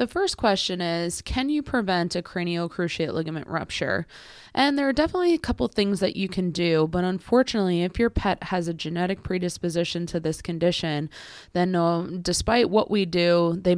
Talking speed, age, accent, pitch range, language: 180 wpm, 20-39, American, 165-195 Hz, English